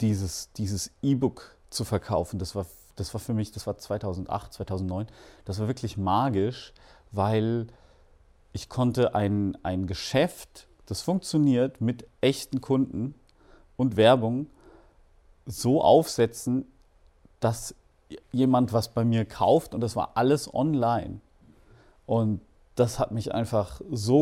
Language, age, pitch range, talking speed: German, 40-59, 100-125 Hz, 125 wpm